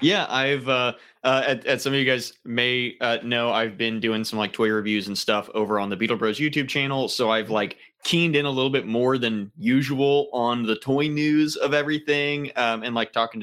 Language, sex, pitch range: English, male, 110-140 Hz